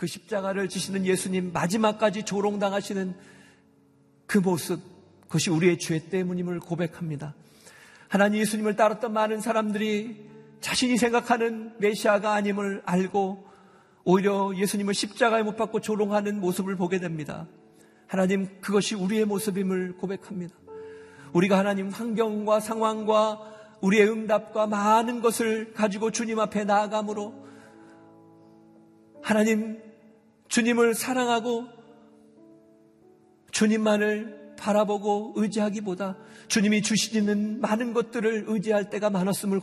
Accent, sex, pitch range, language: native, male, 190-220 Hz, Korean